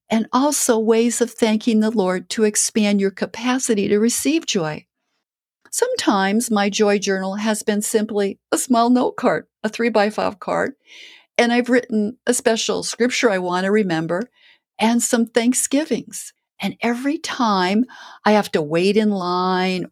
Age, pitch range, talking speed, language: 50-69, 180-235 Hz, 150 wpm, English